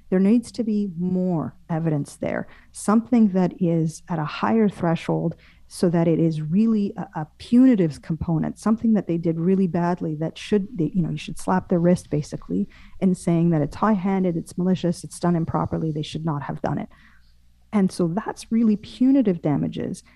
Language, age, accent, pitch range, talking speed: English, 40-59, American, 165-215 Hz, 185 wpm